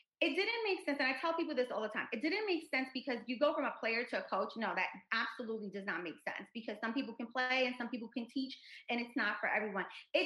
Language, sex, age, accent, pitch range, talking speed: English, female, 30-49, American, 215-280 Hz, 280 wpm